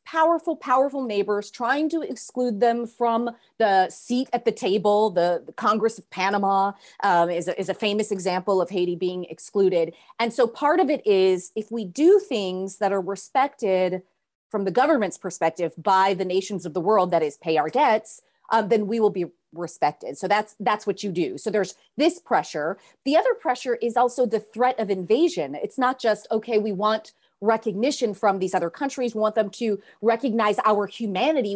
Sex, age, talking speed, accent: female, 30-49, 185 wpm, American